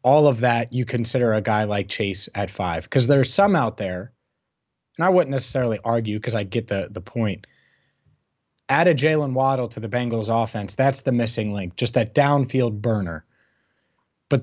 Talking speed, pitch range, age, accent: 185 wpm, 115-145 Hz, 20-39, American